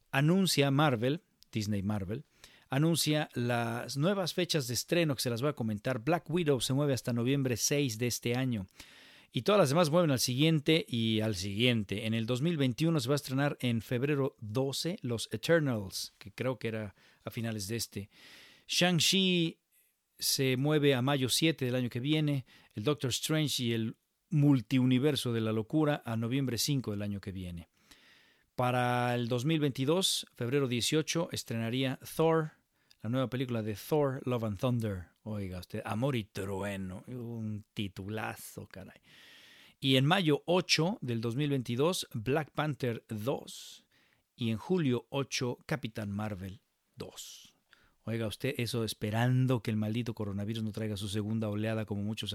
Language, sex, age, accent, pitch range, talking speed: Spanish, male, 40-59, Mexican, 110-145 Hz, 155 wpm